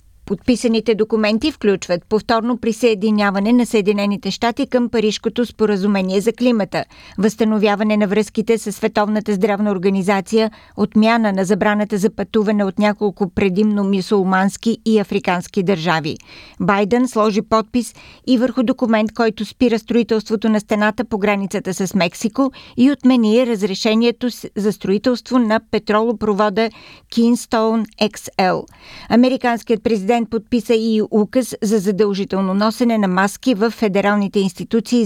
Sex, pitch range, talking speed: female, 200-230 Hz, 120 wpm